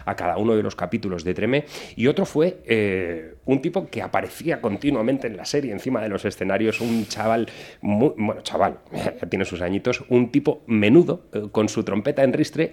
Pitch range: 100-125 Hz